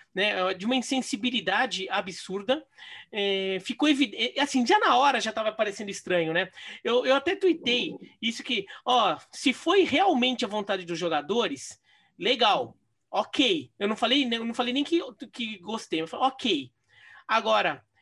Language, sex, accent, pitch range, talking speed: Portuguese, male, Brazilian, 210-275 Hz, 155 wpm